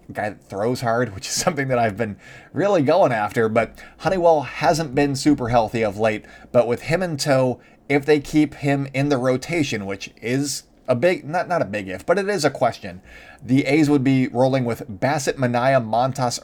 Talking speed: 205 wpm